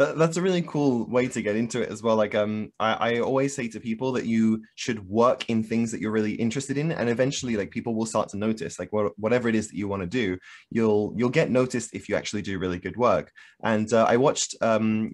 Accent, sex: British, male